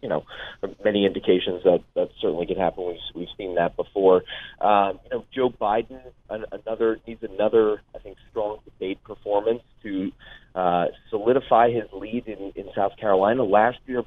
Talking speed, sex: 160 wpm, male